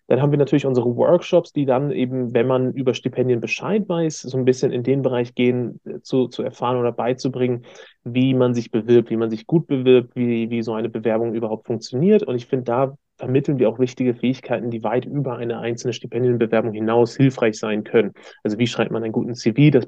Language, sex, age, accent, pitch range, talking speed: German, male, 30-49, German, 115-130 Hz, 210 wpm